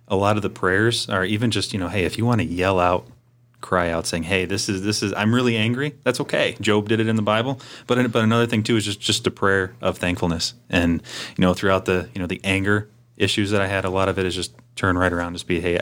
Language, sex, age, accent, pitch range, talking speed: English, male, 30-49, American, 90-110 Hz, 275 wpm